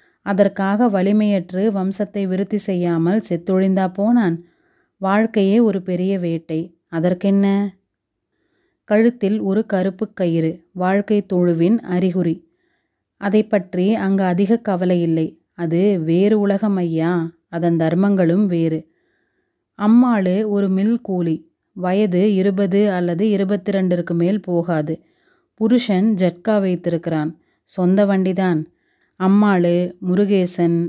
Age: 30-49